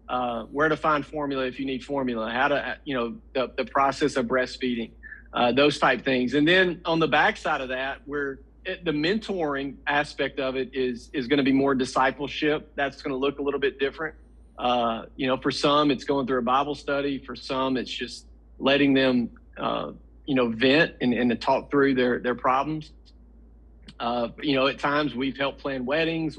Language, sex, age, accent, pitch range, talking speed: English, male, 40-59, American, 125-150 Hz, 200 wpm